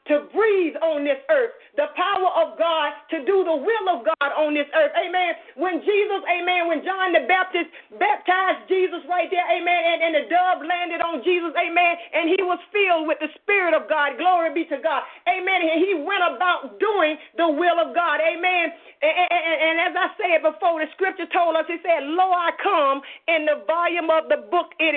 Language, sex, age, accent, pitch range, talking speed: English, female, 40-59, American, 300-355 Hz, 205 wpm